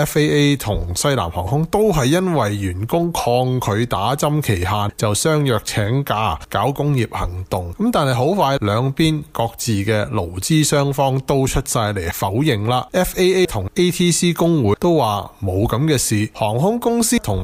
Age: 20-39